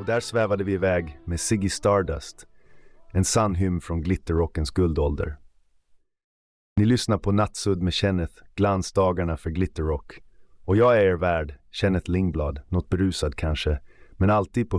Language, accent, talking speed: Swedish, native, 145 wpm